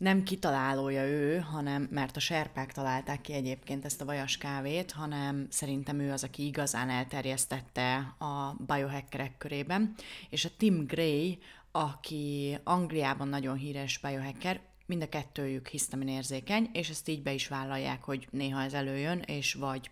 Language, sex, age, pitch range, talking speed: Hungarian, female, 30-49, 140-165 Hz, 150 wpm